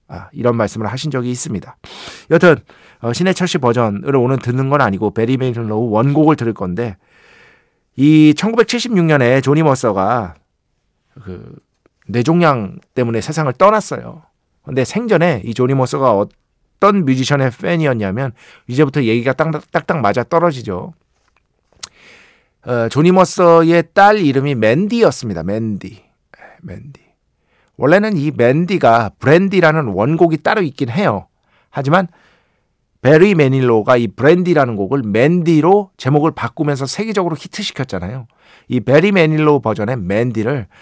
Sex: male